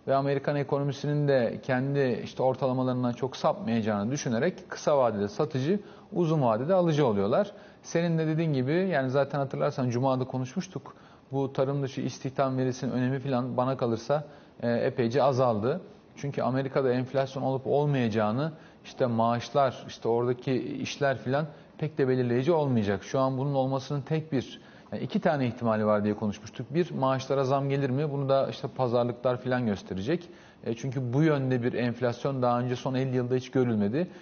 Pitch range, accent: 125-145 Hz, native